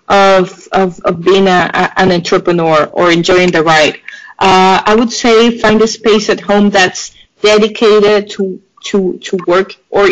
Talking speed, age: 165 wpm, 30-49